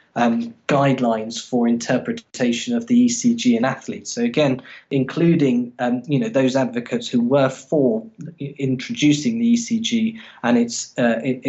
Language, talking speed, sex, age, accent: English, 140 wpm, male, 10-29, British